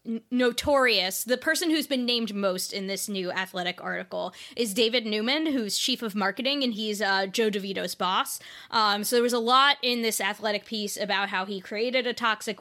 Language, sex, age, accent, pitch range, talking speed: English, female, 20-39, American, 195-225 Hz, 195 wpm